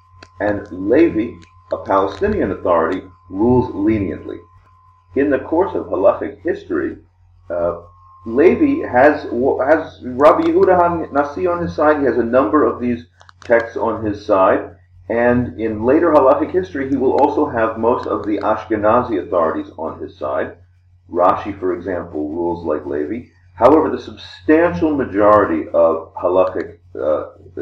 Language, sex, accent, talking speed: English, male, American, 140 wpm